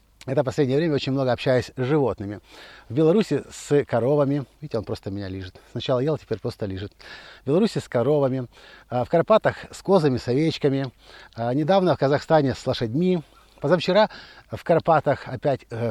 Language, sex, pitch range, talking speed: Russian, male, 115-170 Hz, 155 wpm